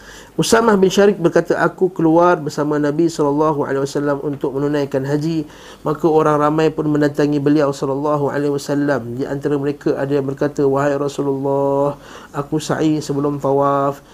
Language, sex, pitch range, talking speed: Malay, male, 140-155 Hz, 130 wpm